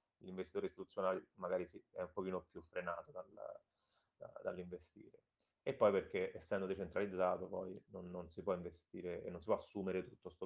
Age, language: 30-49, Italian